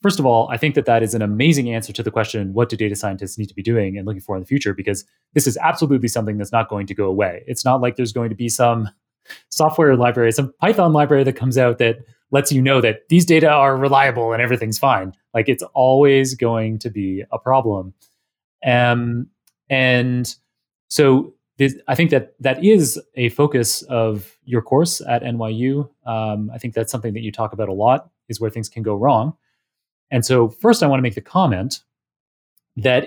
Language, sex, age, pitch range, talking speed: English, male, 30-49, 110-135 Hz, 210 wpm